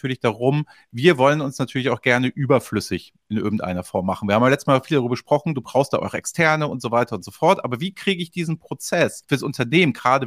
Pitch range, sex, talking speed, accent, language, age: 120-170 Hz, male, 235 wpm, German, German, 40-59